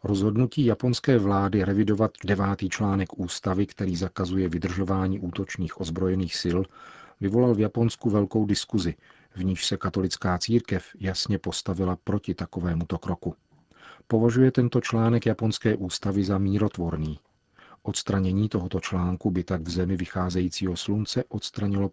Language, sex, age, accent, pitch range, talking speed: Czech, male, 40-59, native, 90-105 Hz, 125 wpm